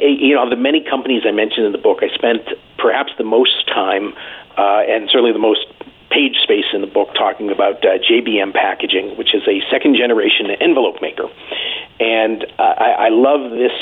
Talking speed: 190 wpm